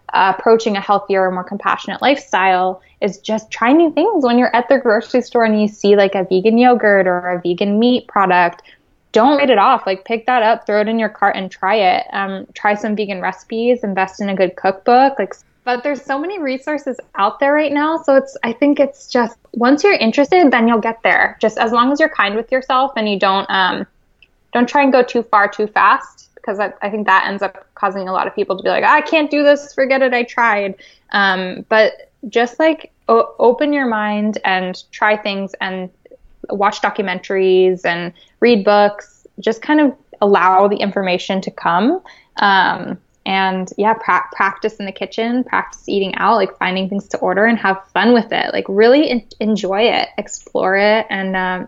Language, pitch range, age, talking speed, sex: English, 195-250 Hz, 10-29, 200 wpm, female